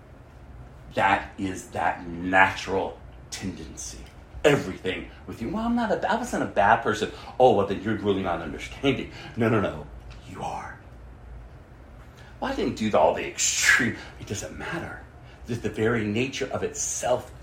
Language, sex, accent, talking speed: English, male, American, 165 wpm